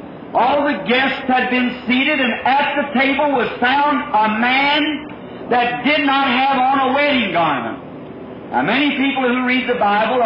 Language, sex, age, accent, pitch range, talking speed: English, male, 50-69, American, 235-285 Hz, 170 wpm